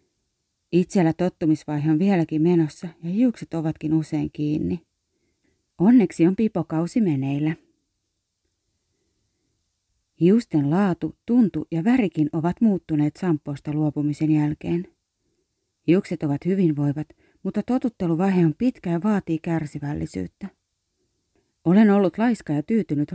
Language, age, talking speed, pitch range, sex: Finnish, 30-49, 100 wpm, 150-195 Hz, female